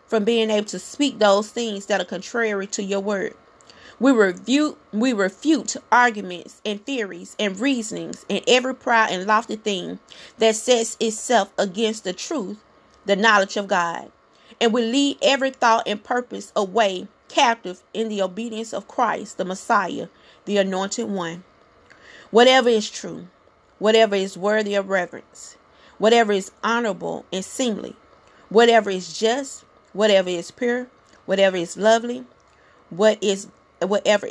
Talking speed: 145 wpm